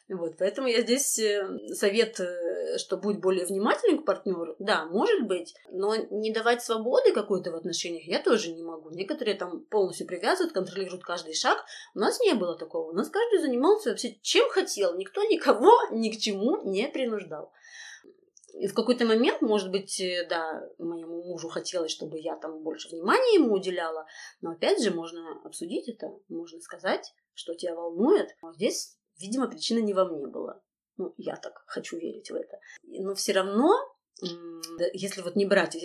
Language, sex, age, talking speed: Russian, female, 20-39, 165 wpm